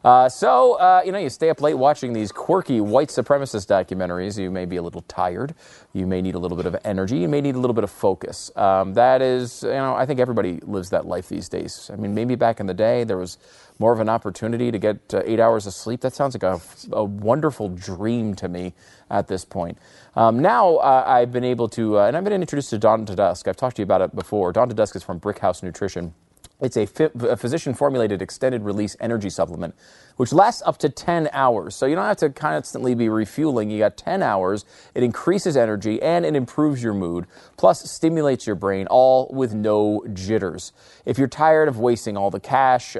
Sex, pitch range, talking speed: male, 100-135 Hz, 225 wpm